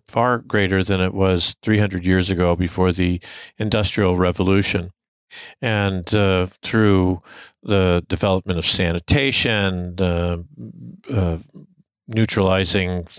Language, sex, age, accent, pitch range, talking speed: English, male, 50-69, American, 95-115 Hz, 95 wpm